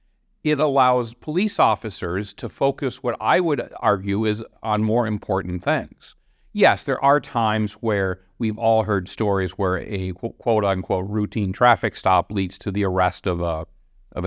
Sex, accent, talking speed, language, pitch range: male, American, 160 wpm, English, 90-115 Hz